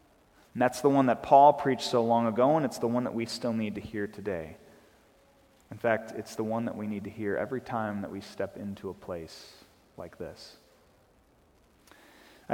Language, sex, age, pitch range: English, male, 30-49, 100-130 Hz